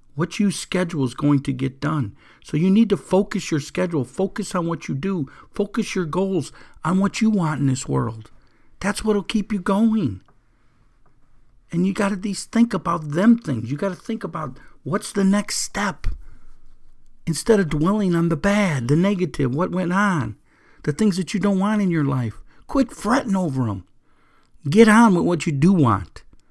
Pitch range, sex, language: 150-205 Hz, male, English